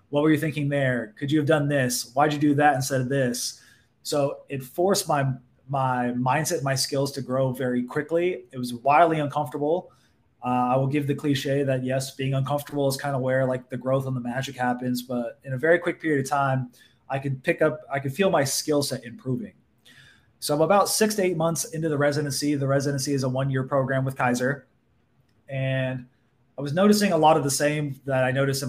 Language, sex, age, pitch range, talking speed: English, male, 20-39, 125-150 Hz, 220 wpm